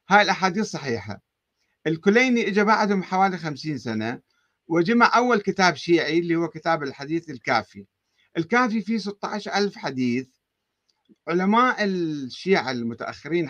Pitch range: 135-200 Hz